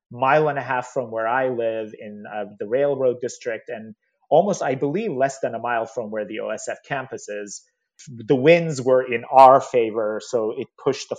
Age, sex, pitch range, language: 30-49, male, 110-145 Hz, English